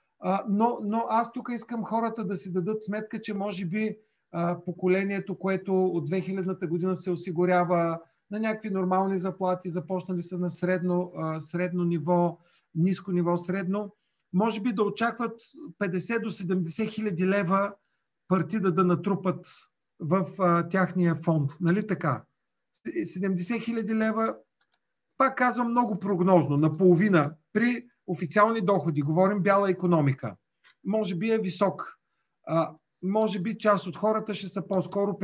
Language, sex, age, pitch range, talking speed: Bulgarian, male, 40-59, 175-220 Hz, 130 wpm